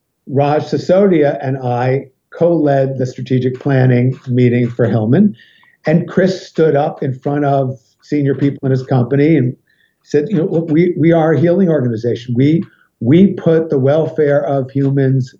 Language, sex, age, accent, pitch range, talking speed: English, male, 50-69, American, 130-165 Hz, 160 wpm